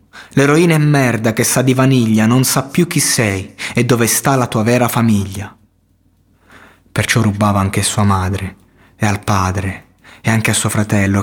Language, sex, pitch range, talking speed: Italian, male, 100-120 Hz, 175 wpm